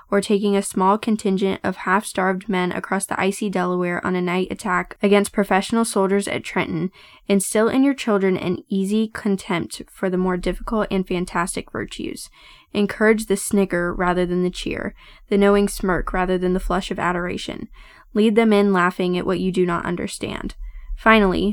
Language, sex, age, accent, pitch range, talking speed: English, female, 10-29, American, 185-215 Hz, 175 wpm